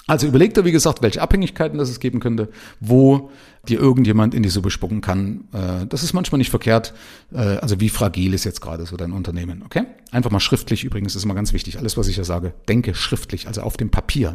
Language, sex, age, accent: German, male, 40-59, German